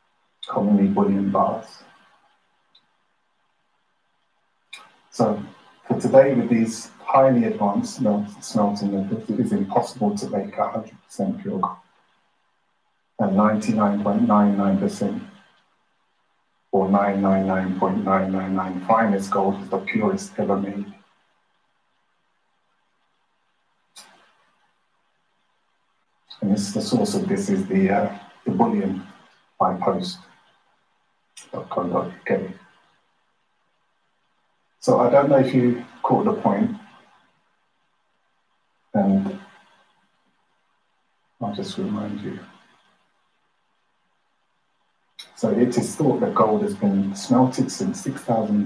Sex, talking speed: male, 85 wpm